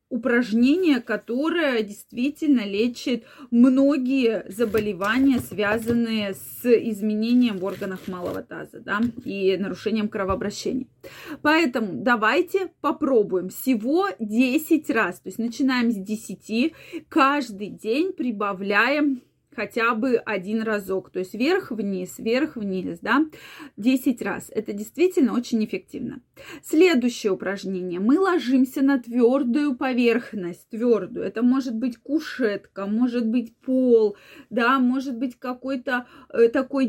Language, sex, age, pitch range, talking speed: Russian, female, 20-39, 220-275 Hz, 105 wpm